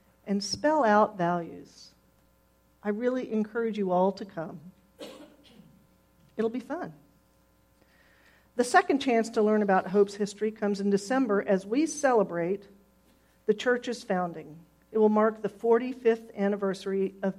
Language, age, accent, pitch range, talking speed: English, 50-69, American, 175-220 Hz, 130 wpm